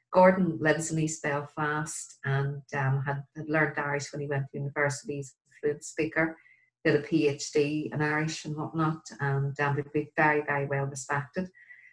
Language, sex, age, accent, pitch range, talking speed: English, female, 40-59, Irish, 145-175 Hz, 165 wpm